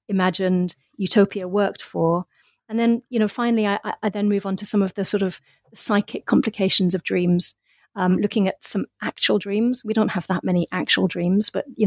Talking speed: 200 wpm